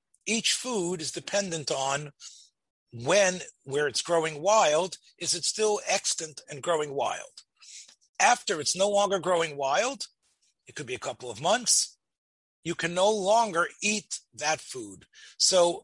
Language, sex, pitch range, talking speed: English, male, 160-210 Hz, 145 wpm